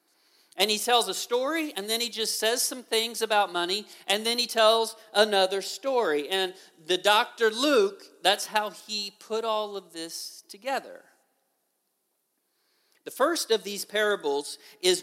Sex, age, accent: male, 40-59, American